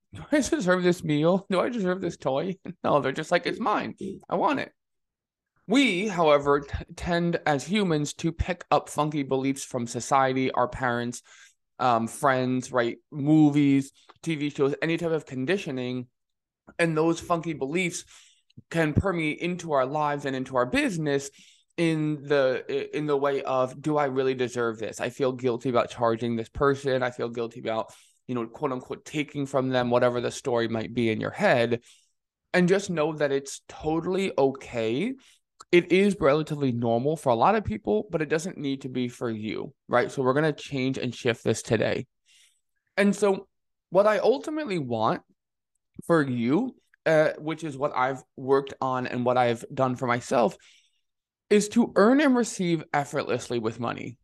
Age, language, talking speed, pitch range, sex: 20-39, English, 170 wpm, 125-165 Hz, male